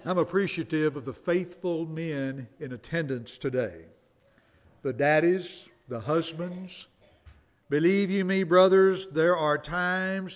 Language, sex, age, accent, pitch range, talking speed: English, male, 60-79, American, 150-185 Hz, 115 wpm